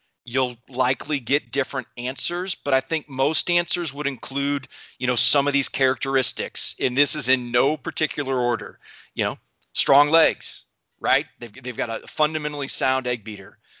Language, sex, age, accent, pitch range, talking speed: English, male, 30-49, American, 120-150 Hz, 165 wpm